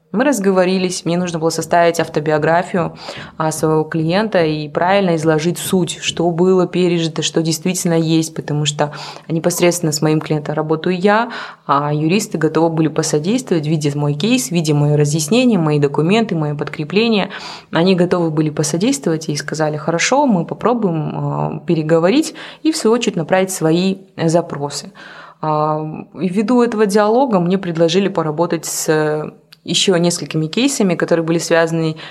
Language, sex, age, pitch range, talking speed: Russian, female, 20-39, 155-190 Hz, 140 wpm